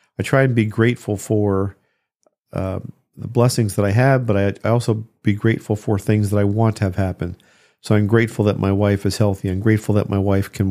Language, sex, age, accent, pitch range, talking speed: English, male, 50-69, American, 100-115 Hz, 225 wpm